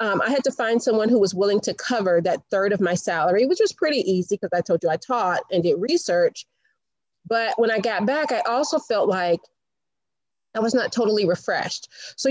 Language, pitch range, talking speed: English, 190-255 Hz, 215 wpm